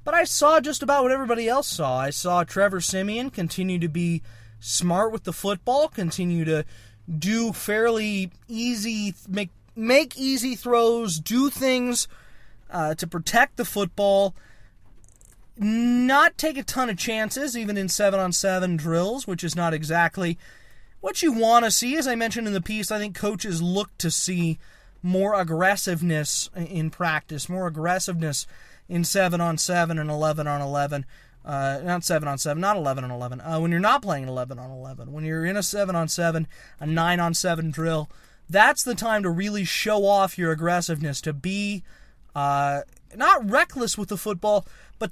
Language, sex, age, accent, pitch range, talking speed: English, male, 20-39, American, 160-220 Hz, 150 wpm